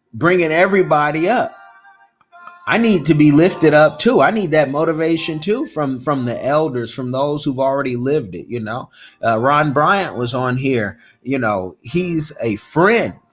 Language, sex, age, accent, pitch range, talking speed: English, male, 30-49, American, 110-155 Hz, 170 wpm